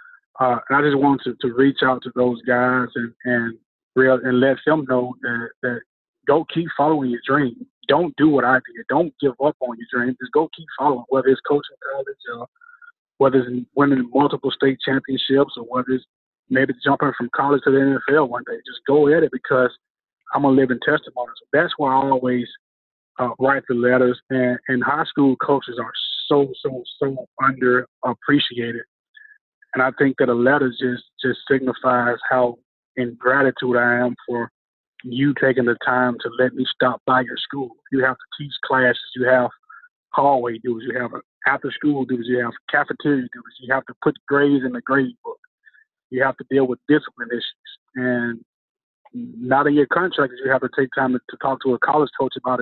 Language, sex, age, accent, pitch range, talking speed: English, male, 20-39, American, 125-145 Hz, 195 wpm